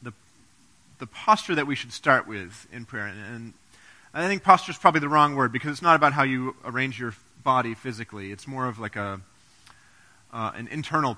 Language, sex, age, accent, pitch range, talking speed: English, male, 30-49, American, 110-155 Hz, 200 wpm